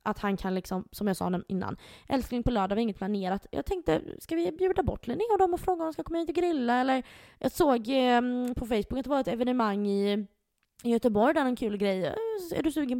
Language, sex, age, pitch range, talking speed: Swedish, female, 20-39, 200-265 Hz, 250 wpm